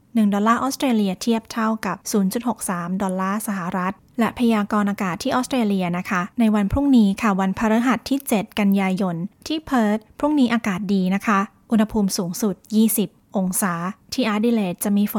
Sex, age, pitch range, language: female, 20-39, 195-225 Hz, Thai